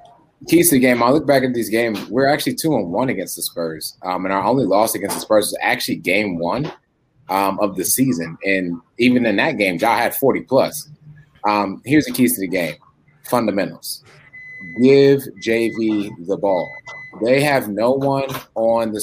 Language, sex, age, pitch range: English, male, 30-49, 105-125 Hz